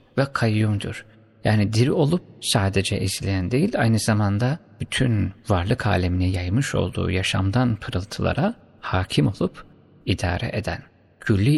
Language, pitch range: Turkish, 100-125 Hz